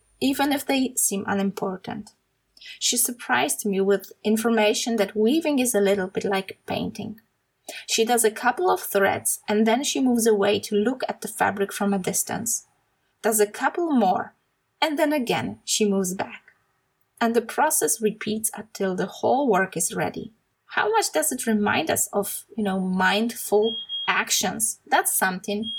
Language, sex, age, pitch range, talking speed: Polish, female, 20-39, 205-260 Hz, 165 wpm